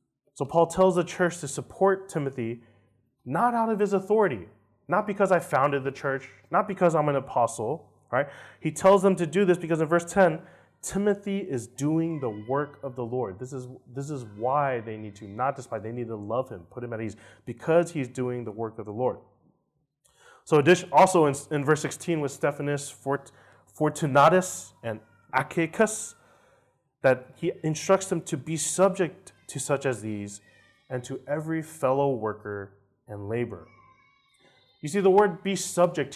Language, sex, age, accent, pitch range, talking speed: English, male, 30-49, American, 120-165 Hz, 175 wpm